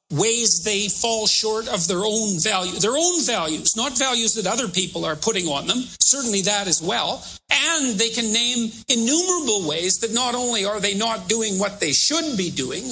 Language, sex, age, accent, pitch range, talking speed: English, male, 50-69, American, 195-250 Hz, 195 wpm